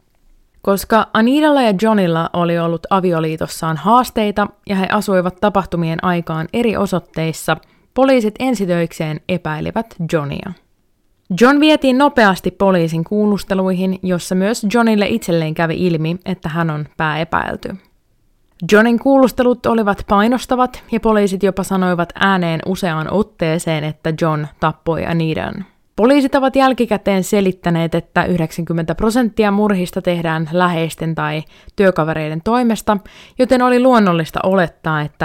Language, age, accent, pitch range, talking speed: Finnish, 20-39, native, 165-215 Hz, 115 wpm